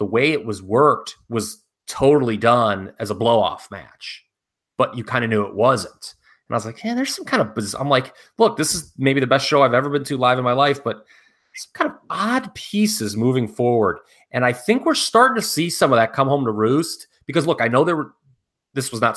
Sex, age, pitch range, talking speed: male, 30-49, 110-145 Hz, 245 wpm